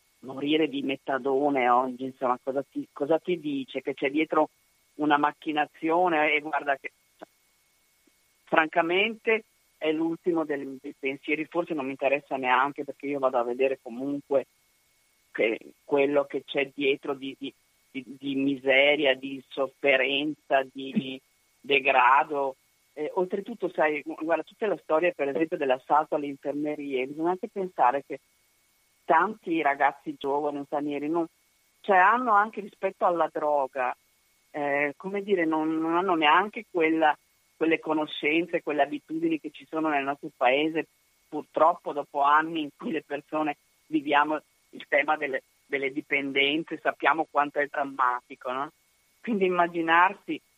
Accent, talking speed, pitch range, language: native, 135 wpm, 135-160 Hz, Italian